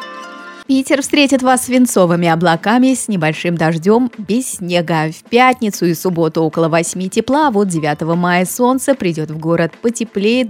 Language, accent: Russian, native